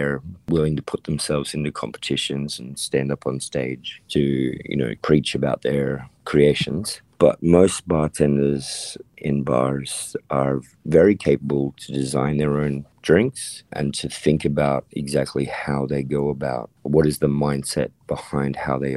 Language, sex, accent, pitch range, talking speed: English, male, Australian, 70-80 Hz, 150 wpm